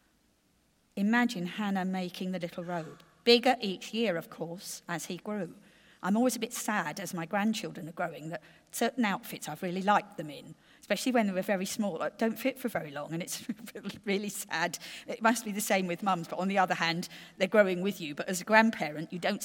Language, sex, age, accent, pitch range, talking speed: English, female, 40-59, British, 180-255 Hz, 215 wpm